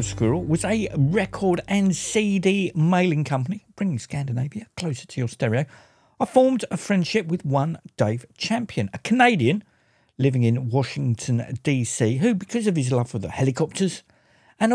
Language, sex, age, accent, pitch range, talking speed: English, male, 50-69, British, 125-185 Hz, 150 wpm